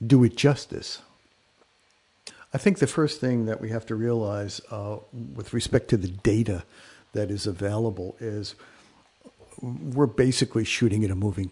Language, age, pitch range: English, 60-79, 105-130 Hz